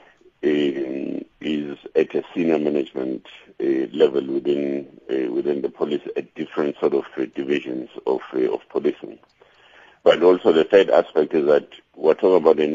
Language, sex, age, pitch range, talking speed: English, male, 60-79, 315-420 Hz, 155 wpm